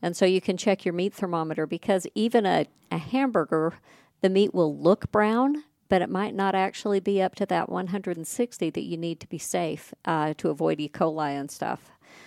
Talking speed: 200 wpm